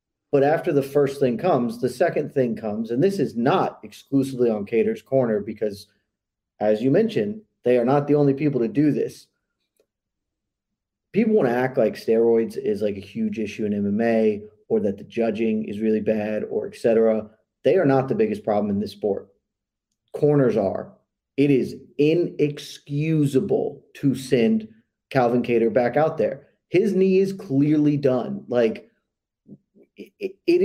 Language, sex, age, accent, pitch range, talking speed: English, male, 30-49, American, 115-150 Hz, 160 wpm